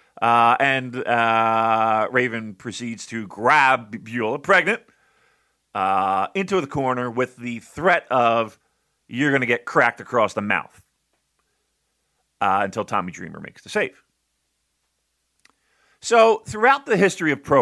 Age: 40-59